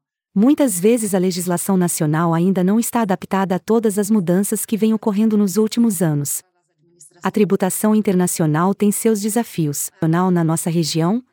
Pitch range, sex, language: 180-230 Hz, female, English